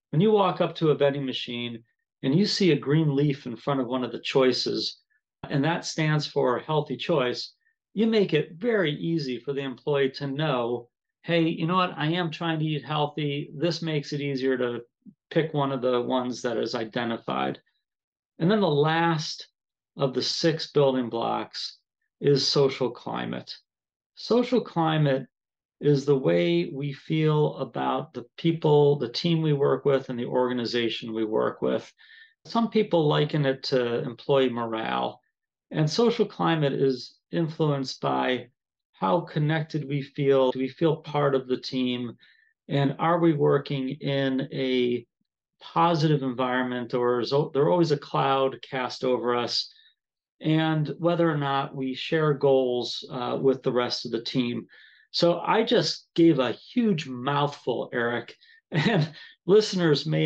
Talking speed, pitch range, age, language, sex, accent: 160 wpm, 125-160 Hz, 40-59, English, male, American